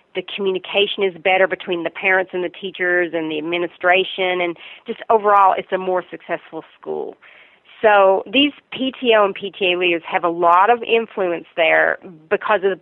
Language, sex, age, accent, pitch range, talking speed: English, female, 40-59, American, 175-205 Hz, 170 wpm